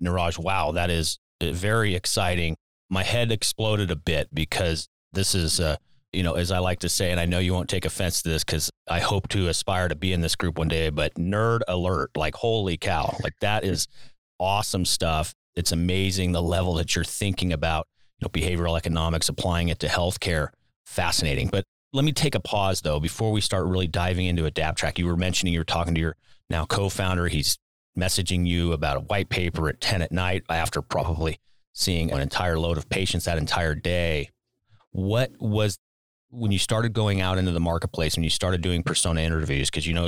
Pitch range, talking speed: 80-95 Hz, 205 wpm